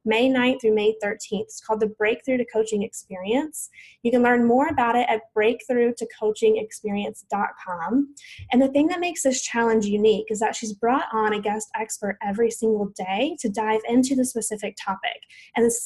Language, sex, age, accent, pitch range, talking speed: English, female, 20-39, American, 215-255 Hz, 175 wpm